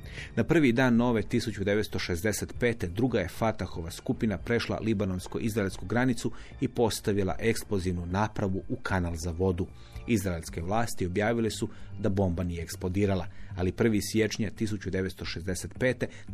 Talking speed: 120 wpm